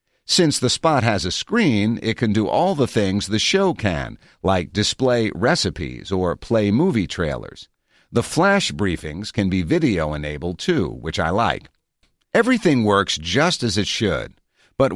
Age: 50-69